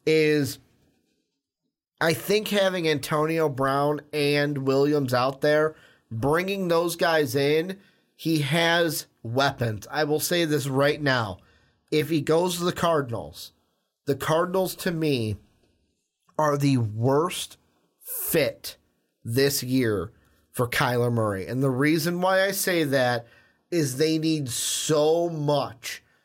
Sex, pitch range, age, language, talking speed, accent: male, 135-170 Hz, 30-49, English, 125 wpm, American